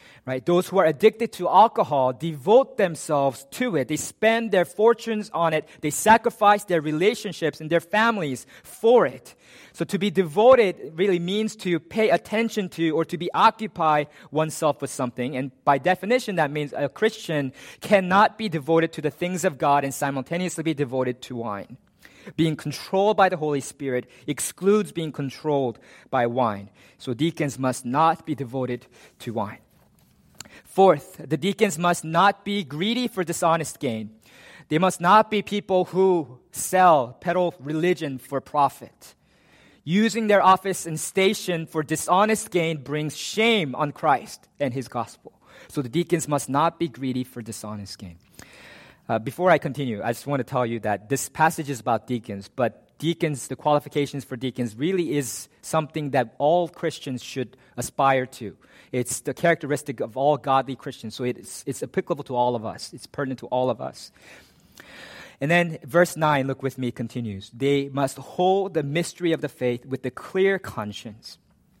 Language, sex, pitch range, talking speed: English, male, 130-180 Hz, 170 wpm